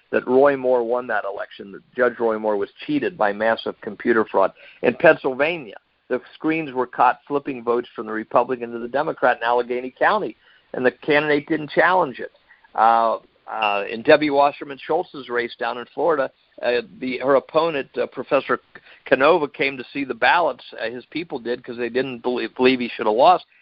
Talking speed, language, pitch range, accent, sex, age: 185 wpm, English, 120-155 Hz, American, male, 50-69